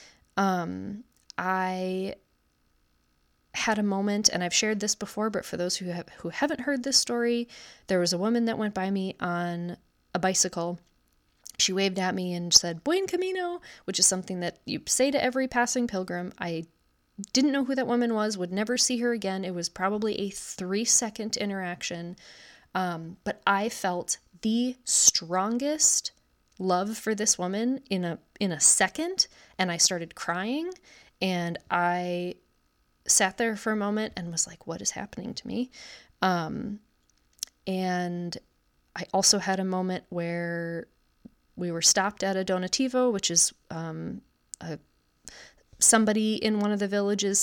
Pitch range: 175-220 Hz